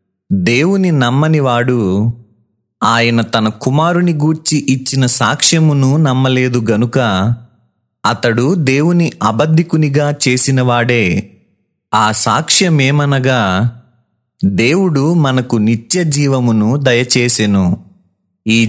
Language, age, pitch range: Telugu, 30-49, 115-150 Hz